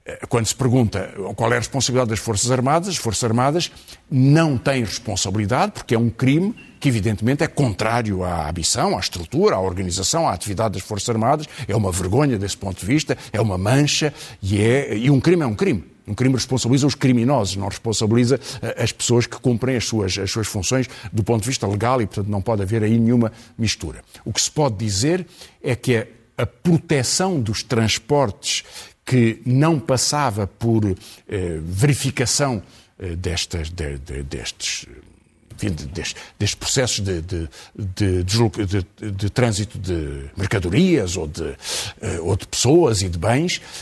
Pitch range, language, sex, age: 105-135 Hz, Portuguese, male, 50-69